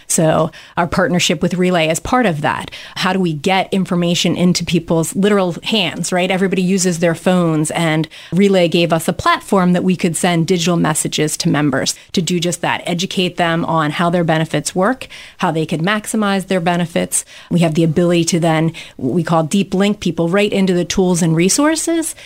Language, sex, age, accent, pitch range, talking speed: English, female, 30-49, American, 165-190 Hz, 190 wpm